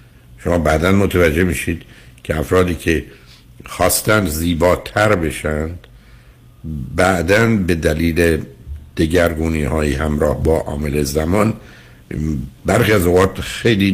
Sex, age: male, 60-79